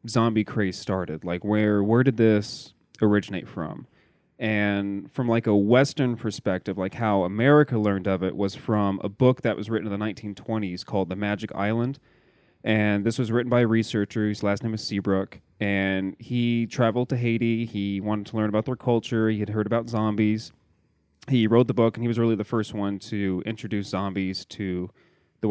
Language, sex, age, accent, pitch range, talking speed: English, male, 30-49, American, 100-115 Hz, 190 wpm